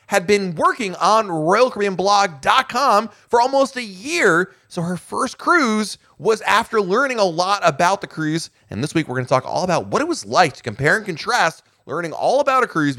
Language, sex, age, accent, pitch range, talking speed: English, male, 30-49, American, 105-165 Hz, 210 wpm